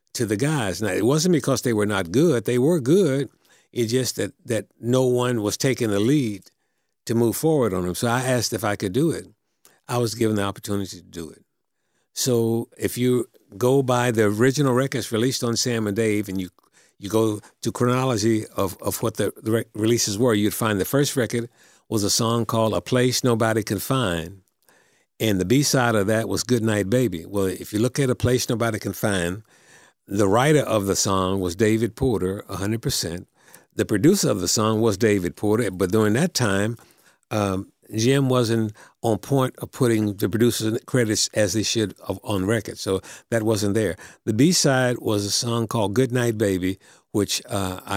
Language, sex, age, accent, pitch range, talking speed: English, male, 60-79, American, 100-125 Hz, 195 wpm